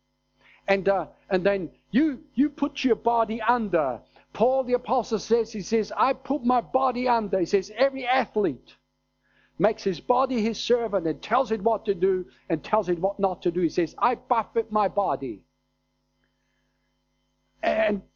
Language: English